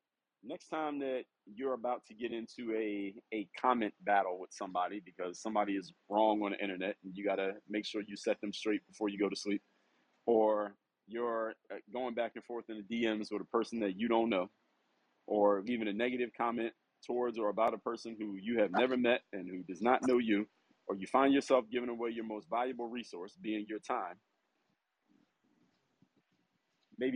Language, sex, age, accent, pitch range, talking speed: English, male, 40-59, American, 105-125 Hz, 190 wpm